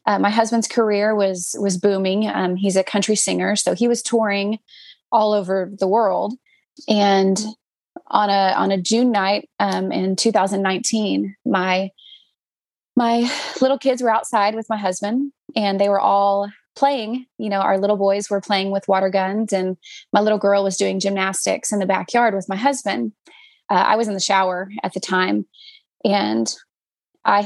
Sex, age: female, 20-39